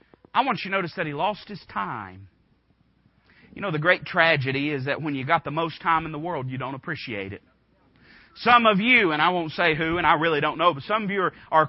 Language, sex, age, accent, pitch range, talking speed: English, male, 40-59, American, 125-175 Hz, 245 wpm